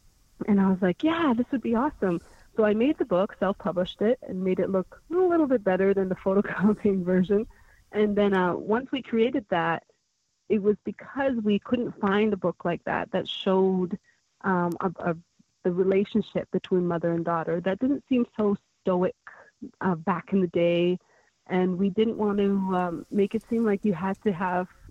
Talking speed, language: 190 wpm, English